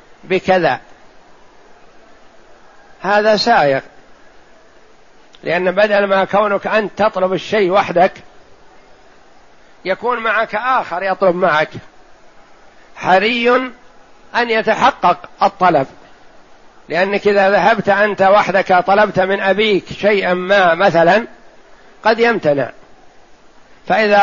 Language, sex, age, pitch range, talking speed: Arabic, male, 60-79, 190-225 Hz, 85 wpm